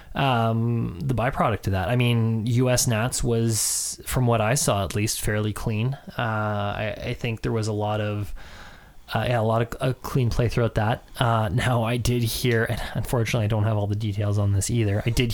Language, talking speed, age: English, 215 wpm, 20-39